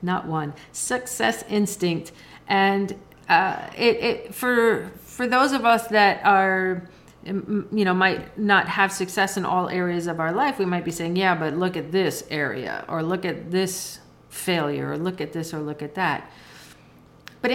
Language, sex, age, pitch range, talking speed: English, female, 40-59, 175-230 Hz, 175 wpm